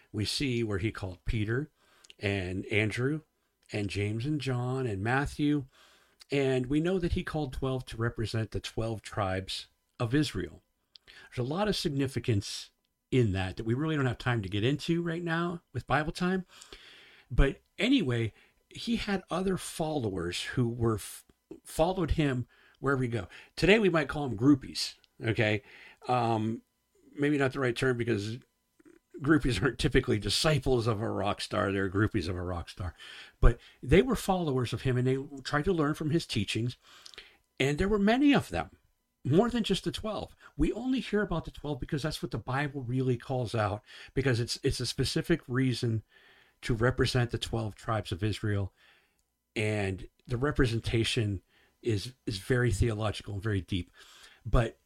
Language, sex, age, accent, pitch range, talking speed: English, male, 50-69, American, 110-150 Hz, 165 wpm